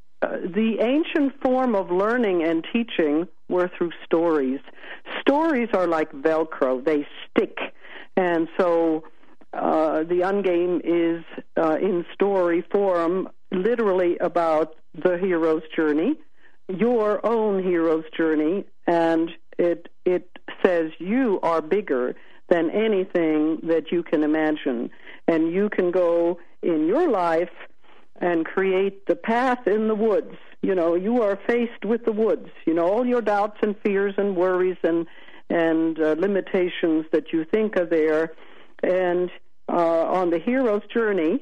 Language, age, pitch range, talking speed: English, 60-79, 165-220 Hz, 140 wpm